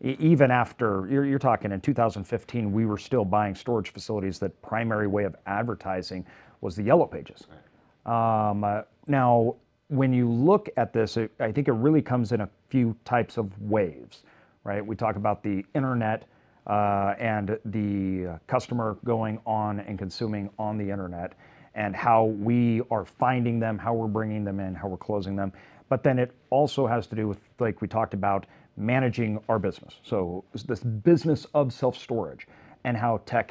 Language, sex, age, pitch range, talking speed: English, male, 40-59, 105-125 Hz, 170 wpm